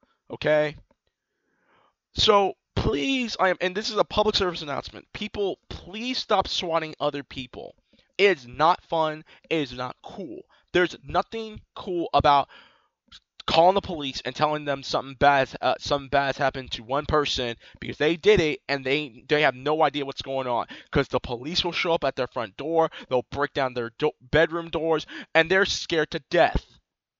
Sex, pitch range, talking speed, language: male, 145-200 Hz, 175 wpm, English